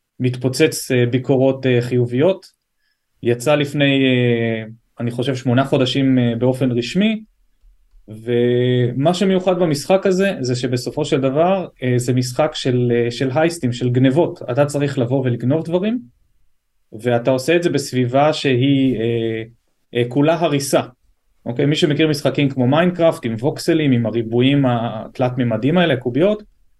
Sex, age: male, 30-49